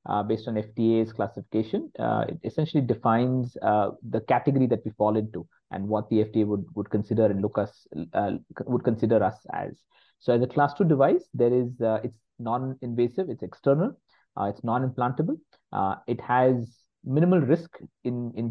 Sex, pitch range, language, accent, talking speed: male, 110-130 Hz, English, Indian, 180 wpm